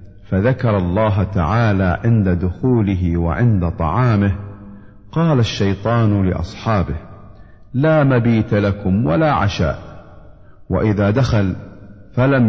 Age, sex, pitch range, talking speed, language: 50-69, male, 95-120 Hz, 85 wpm, Arabic